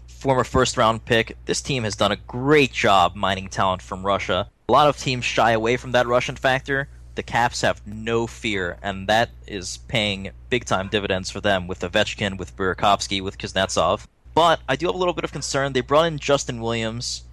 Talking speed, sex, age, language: 205 wpm, male, 20-39, English